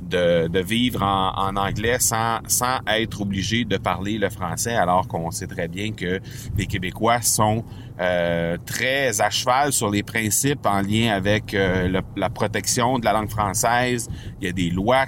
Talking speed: 185 wpm